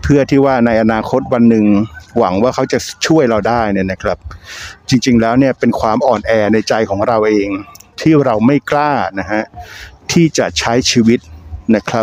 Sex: male